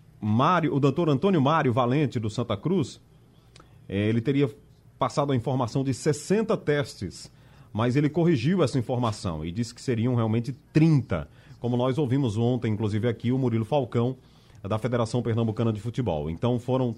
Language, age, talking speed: Portuguese, 30-49, 160 wpm